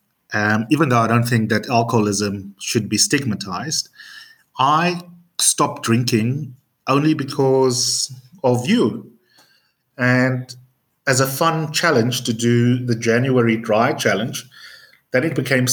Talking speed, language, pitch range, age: 120 wpm, English, 110-145 Hz, 30-49